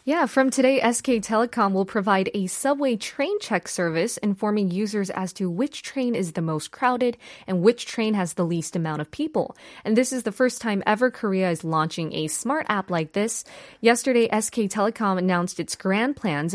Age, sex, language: 20-39, female, Korean